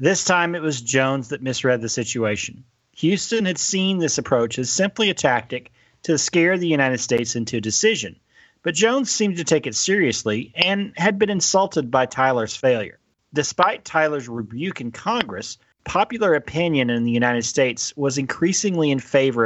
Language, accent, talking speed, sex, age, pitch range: English, American, 170 wpm, male, 40-59, 120-170 Hz